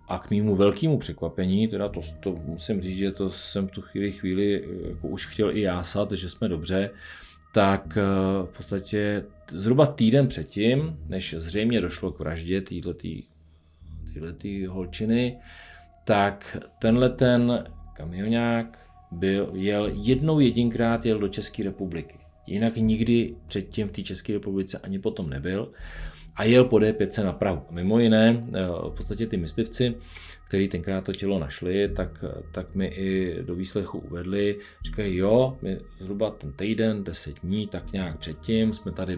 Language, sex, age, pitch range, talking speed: Czech, male, 40-59, 85-110 Hz, 145 wpm